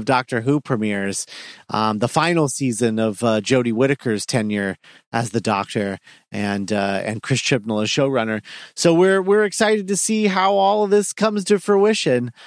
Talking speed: 175 wpm